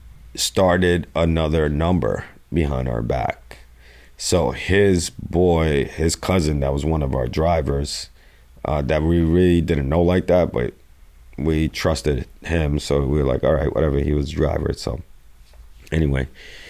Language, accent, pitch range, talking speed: English, American, 65-85 Hz, 150 wpm